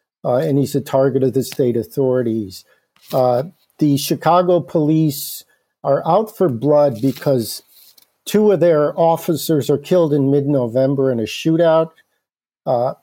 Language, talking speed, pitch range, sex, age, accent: English, 145 wpm, 130-160 Hz, male, 50-69, American